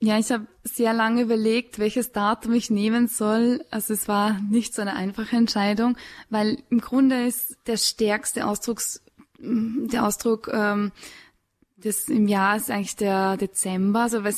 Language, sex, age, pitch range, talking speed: German, female, 20-39, 195-220 Hz, 165 wpm